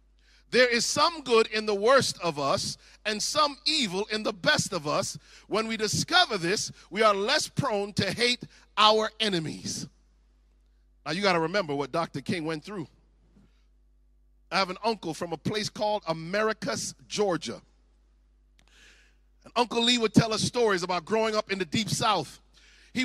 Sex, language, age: male, English, 40-59